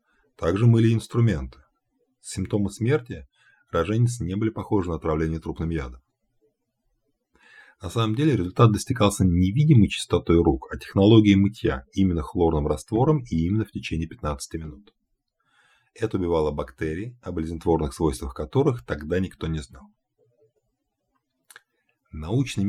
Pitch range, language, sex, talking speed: 80-110 Hz, Russian, male, 120 wpm